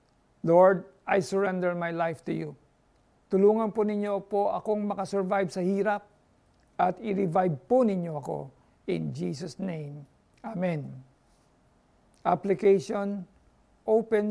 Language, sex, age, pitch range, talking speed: Filipino, male, 50-69, 165-210 Hz, 110 wpm